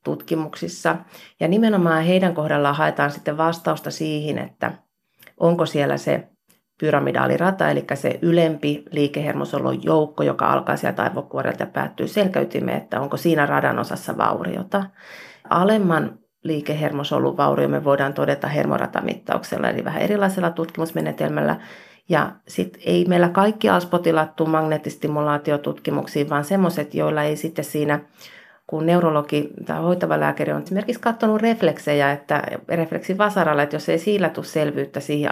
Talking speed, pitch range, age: 125 wpm, 145-175 Hz, 30-49